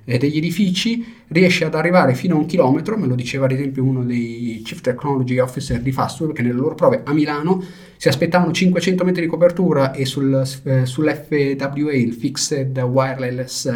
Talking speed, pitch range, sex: 165 wpm, 125-165 Hz, male